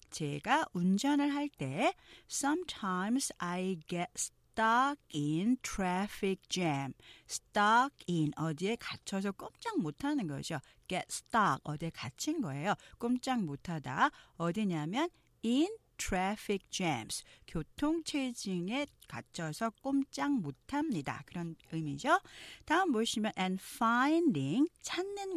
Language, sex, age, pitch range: Korean, female, 40-59, 165-270 Hz